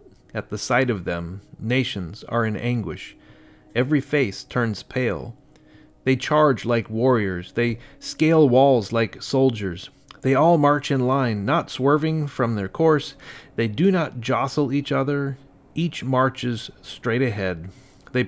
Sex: male